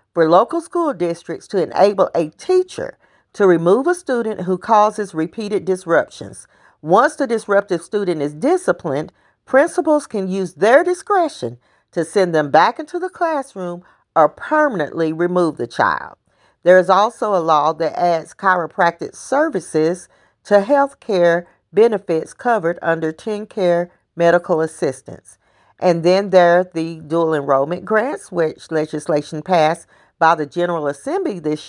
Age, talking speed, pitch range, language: 40-59, 140 wpm, 170-235 Hz, English